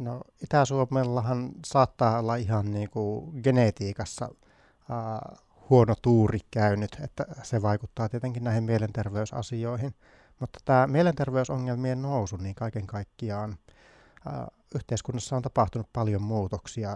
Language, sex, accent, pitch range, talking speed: Finnish, male, native, 105-125 Hz, 90 wpm